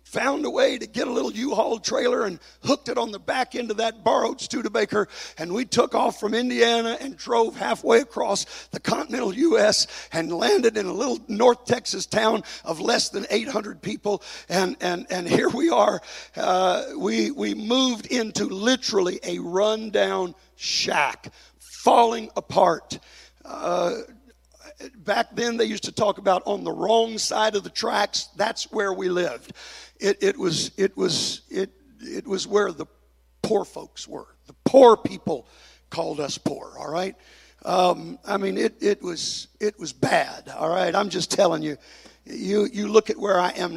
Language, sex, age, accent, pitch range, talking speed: English, male, 50-69, American, 180-240 Hz, 170 wpm